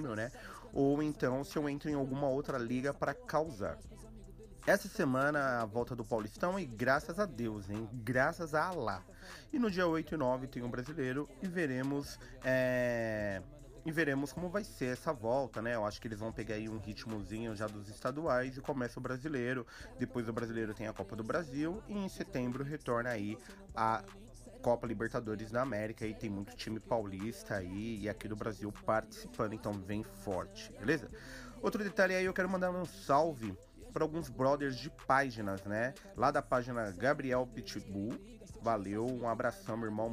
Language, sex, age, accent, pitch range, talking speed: Portuguese, male, 30-49, Brazilian, 110-140 Hz, 180 wpm